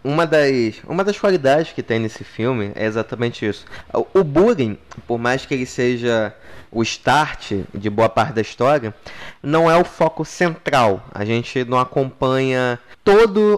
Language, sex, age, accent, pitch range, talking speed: Portuguese, male, 20-39, Brazilian, 125-200 Hz, 160 wpm